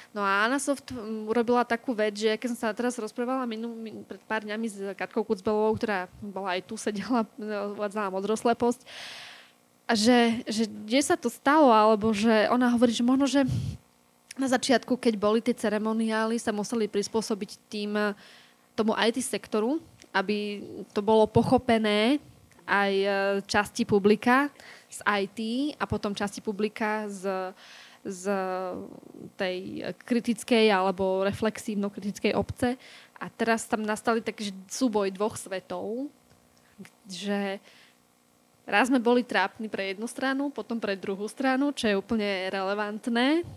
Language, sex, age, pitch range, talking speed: Slovak, female, 20-39, 205-240 Hz, 140 wpm